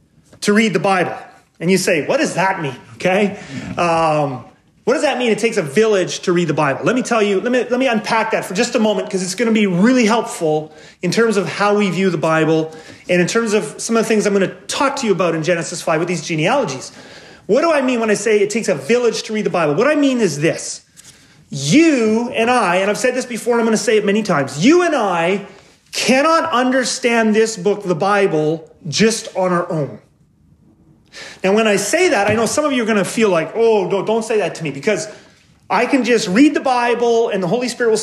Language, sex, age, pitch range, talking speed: English, male, 30-49, 185-235 Hz, 250 wpm